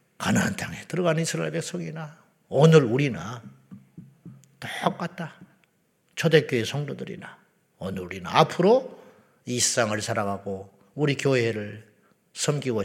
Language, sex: Korean, male